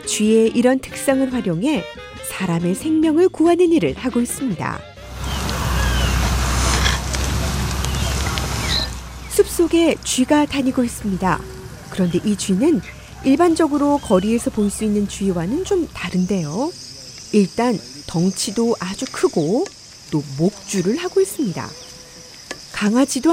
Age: 40-59